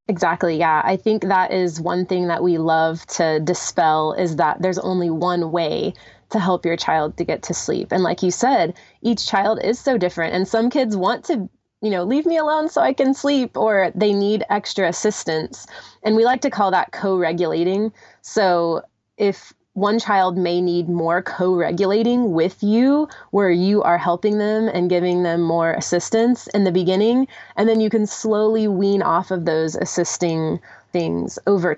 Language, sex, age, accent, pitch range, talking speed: English, female, 20-39, American, 170-205 Hz, 185 wpm